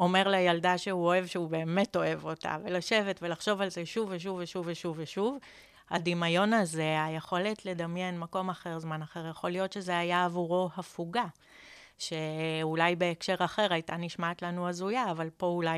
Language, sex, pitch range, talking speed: Hebrew, female, 165-185 Hz, 155 wpm